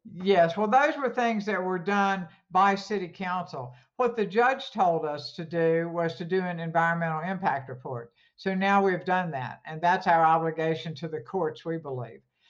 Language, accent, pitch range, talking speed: English, American, 155-180 Hz, 185 wpm